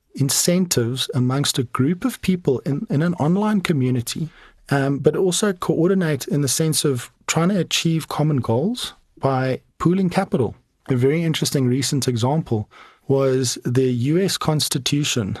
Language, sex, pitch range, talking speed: English, male, 125-160 Hz, 140 wpm